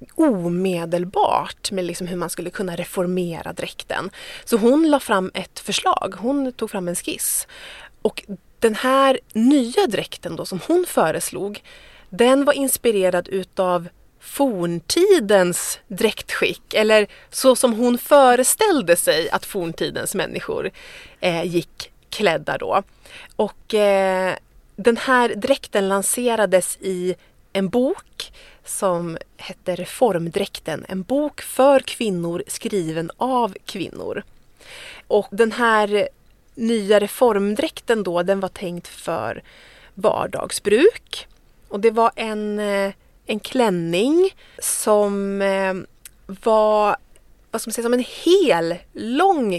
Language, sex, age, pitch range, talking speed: Swedish, female, 30-49, 185-265 Hz, 110 wpm